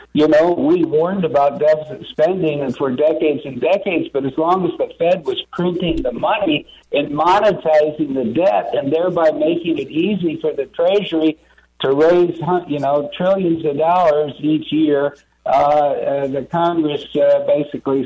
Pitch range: 145-185 Hz